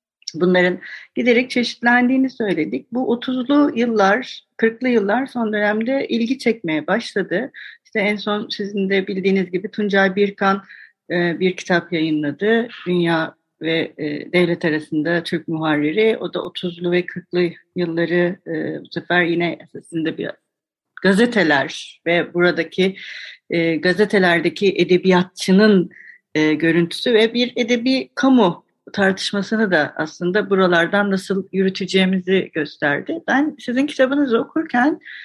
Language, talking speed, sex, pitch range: Turkish, 110 wpm, female, 175-245 Hz